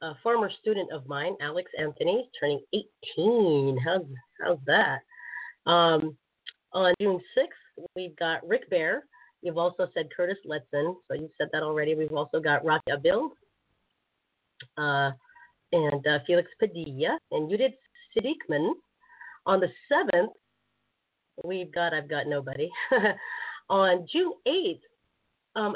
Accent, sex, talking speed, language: American, female, 130 wpm, English